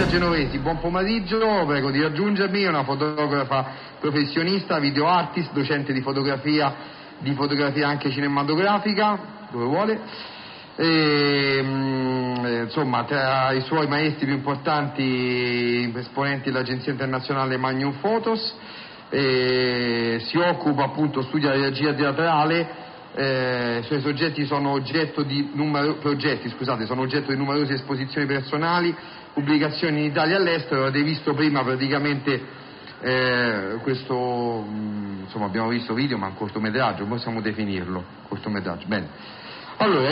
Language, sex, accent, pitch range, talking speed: Italian, male, native, 130-155 Hz, 115 wpm